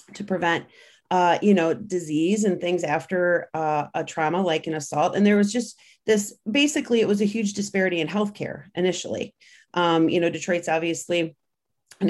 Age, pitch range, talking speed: 30-49, 165-190 Hz, 180 wpm